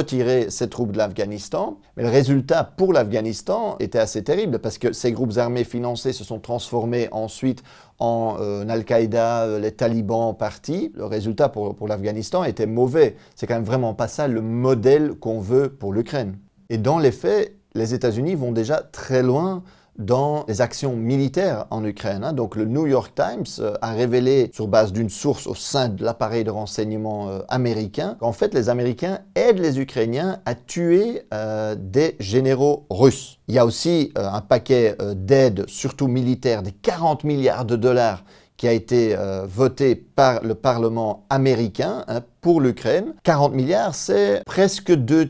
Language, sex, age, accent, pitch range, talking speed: French, male, 30-49, French, 110-135 Hz, 170 wpm